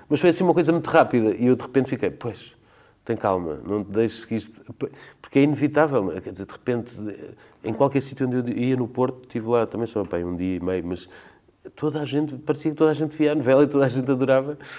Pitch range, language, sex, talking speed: 90-120 Hz, Portuguese, male, 250 wpm